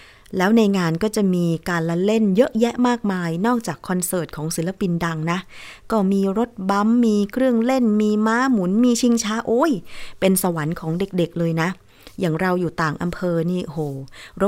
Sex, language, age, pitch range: female, Thai, 20-39, 165-215 Hz